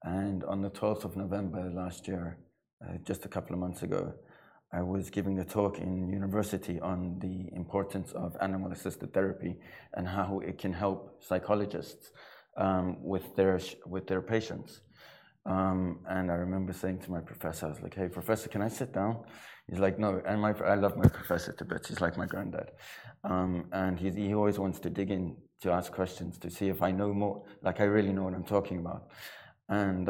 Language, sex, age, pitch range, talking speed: Arabic, male, 20-39, 90-105 Hz, 195 wpm